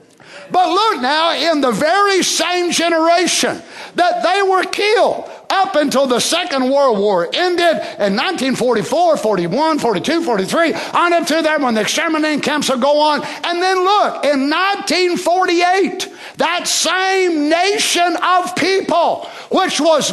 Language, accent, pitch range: English, American, 270-355 Hz